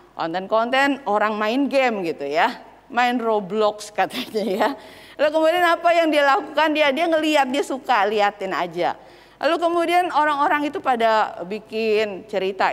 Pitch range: 235-340 Hz